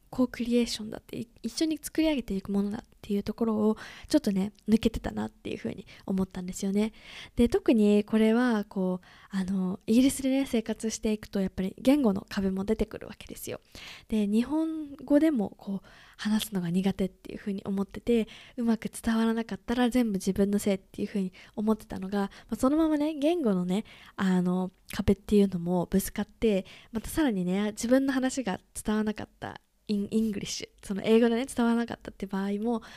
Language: Japanese